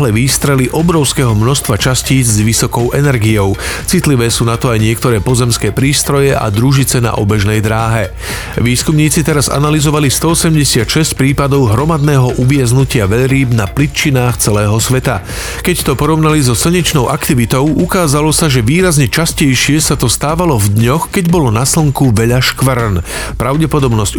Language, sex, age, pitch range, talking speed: Slovak, male, 40-59, 115-150 Hz, 135 wpm